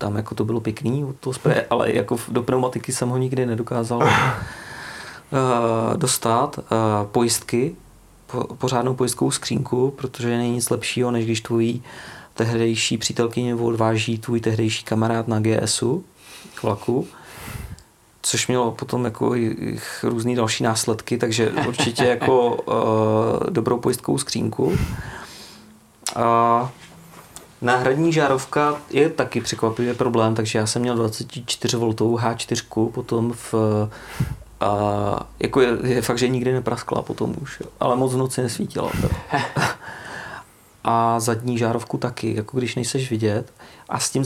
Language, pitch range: Czech, 115-125 Hz